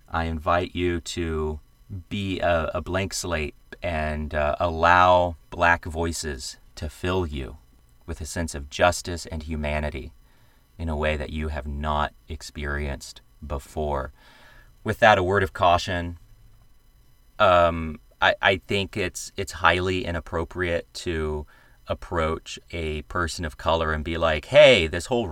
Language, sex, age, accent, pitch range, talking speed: English, male, 30-49, American, 75-90 Hz, 140 wpm